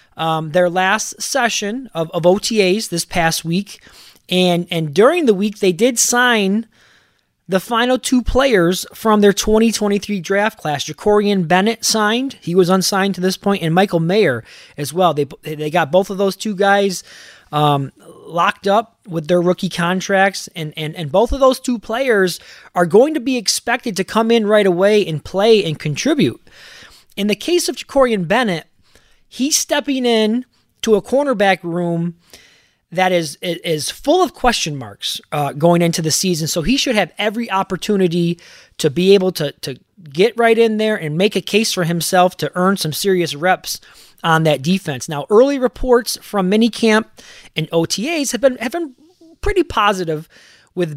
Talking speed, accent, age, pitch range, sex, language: 175 wpm, American, 20-39, 170-225 Hz, male, English